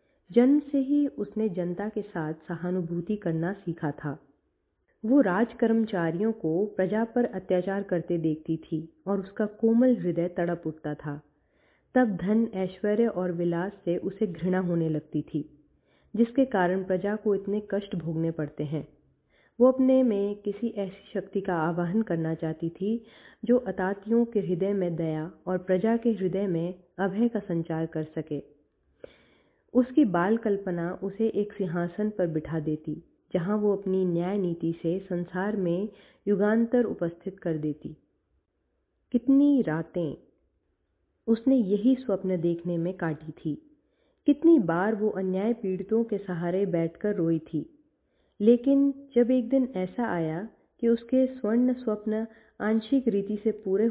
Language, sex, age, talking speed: Hindi, female, 30-49, 140 wpm